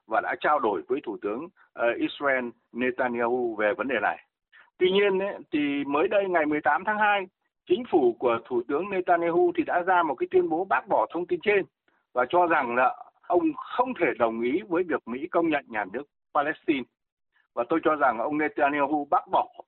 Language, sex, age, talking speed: Vietnamese, male, 60-79, 200 wpm